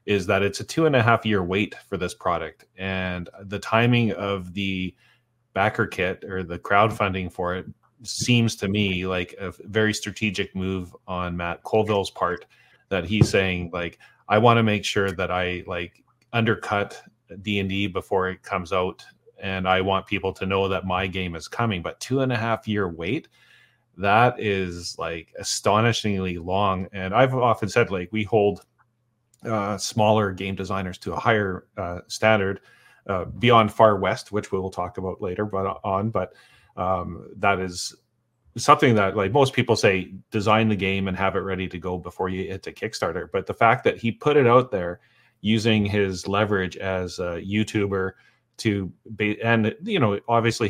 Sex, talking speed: male, 180 wpm